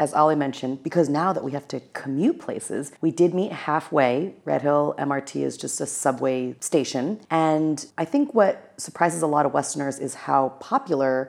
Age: 30-49